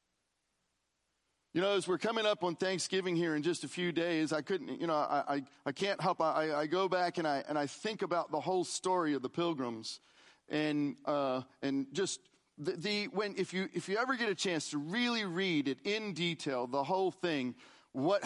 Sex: male